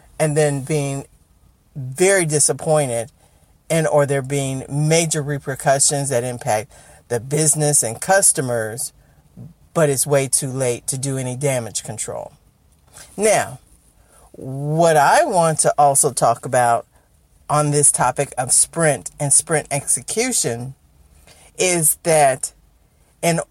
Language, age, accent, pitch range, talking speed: English, 50-69, American, 135-170 Hz, 115 wpm